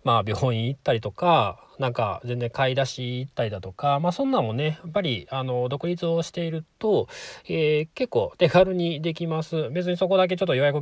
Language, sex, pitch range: Japanese, male, 115-170 Hz